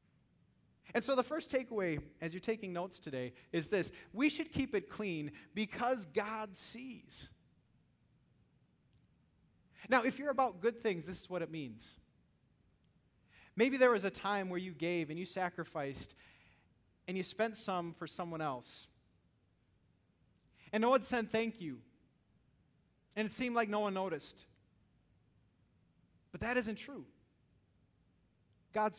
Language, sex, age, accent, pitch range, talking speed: English, male, 30-49, American, 170-250 Hz, 140 wpm